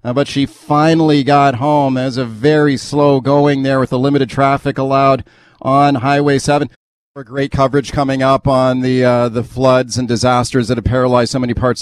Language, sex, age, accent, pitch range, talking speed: English, male, 40-59, American, 120-130 Hz, 190 wpm